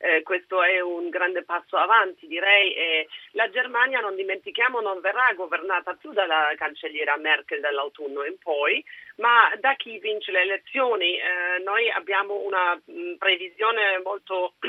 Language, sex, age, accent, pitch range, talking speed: Italian, female, 40-59, native, 170-260 Hz, 145 wpm